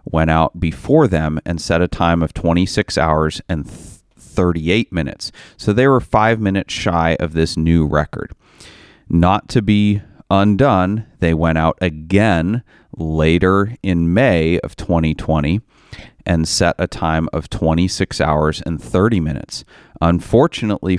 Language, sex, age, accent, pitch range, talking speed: English, male, 30-49, American, 80-95 Hz, 135 wpm